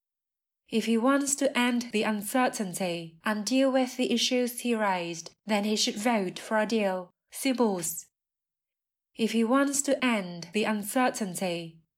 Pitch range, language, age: 185-250 Hz, Vietnamese, 20-39